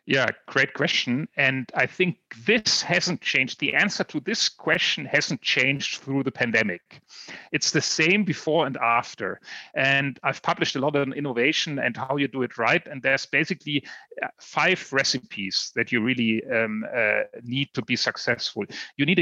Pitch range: 125-160 Hz